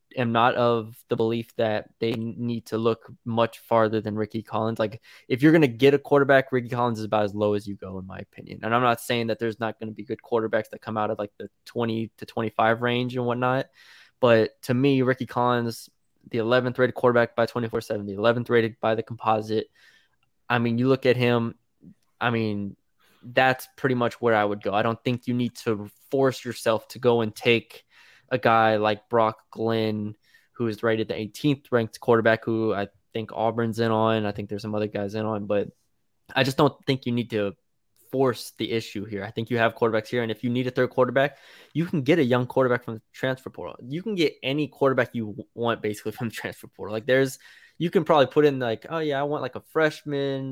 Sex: male